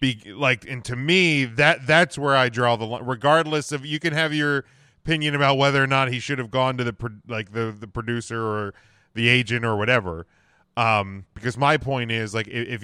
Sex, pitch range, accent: male, 105-135 Hz, American